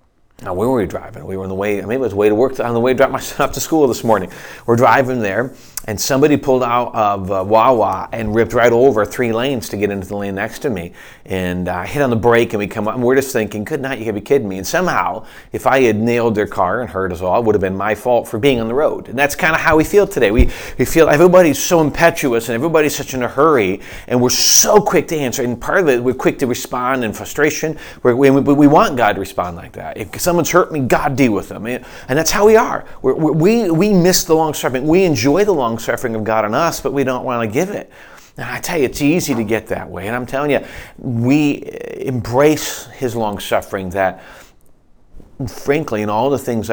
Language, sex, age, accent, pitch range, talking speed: English, male, 30-49, American, 100-140 Hz, 265 wpm